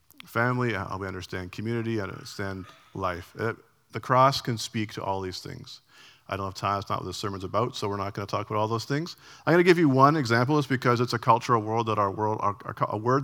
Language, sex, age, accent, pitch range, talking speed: English, male, 40-59, American, 95-125 Hz, 260 wpm